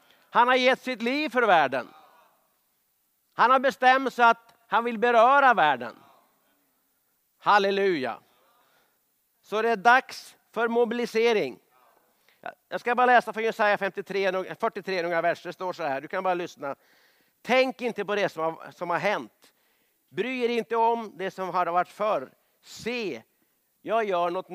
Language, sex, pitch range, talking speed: Swedish, male, 185-230 Hz, 150 wpm